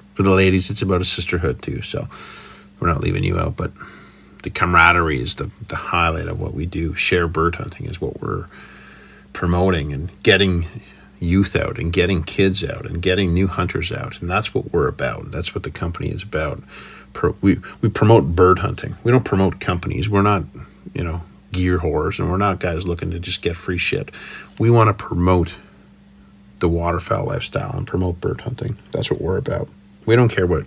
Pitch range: 85-100 Hz